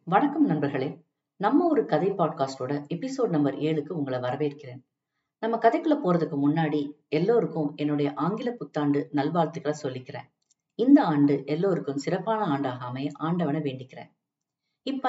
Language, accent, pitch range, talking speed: Tamil, native, 145-200 Hz, 115 wpm